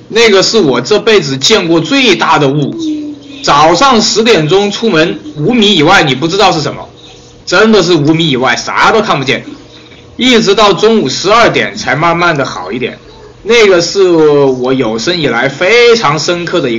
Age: 20-39